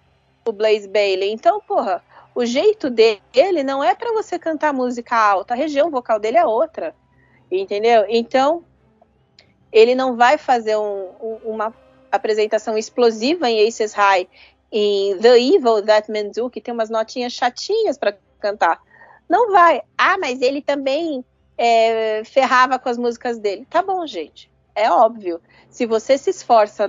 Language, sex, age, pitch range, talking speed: Portuguese, female, 40-59, 205-285 Hz, 155 wpm